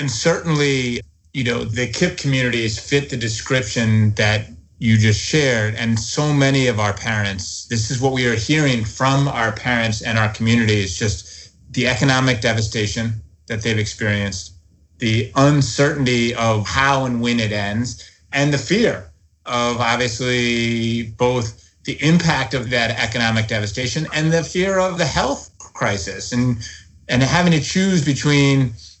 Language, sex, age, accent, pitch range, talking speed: English, male, 30-49, American, 110-145 Hz, 150 wpm